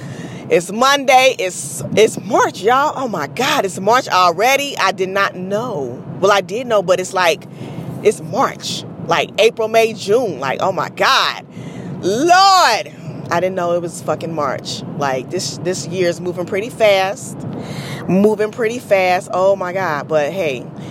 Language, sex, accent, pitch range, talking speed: English, female, American, 160-220 Hz, 165 wpm